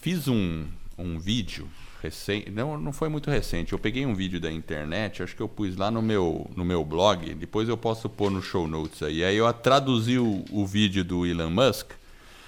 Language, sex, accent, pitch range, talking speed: Portuguese, male, Brazilian, 95-130 Hz, 200 wpm